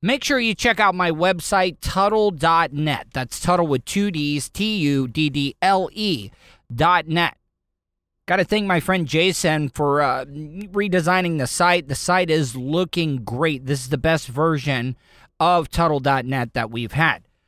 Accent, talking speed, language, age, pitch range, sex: American, 135 wpm, English, 30-49, 140-185 Hz, male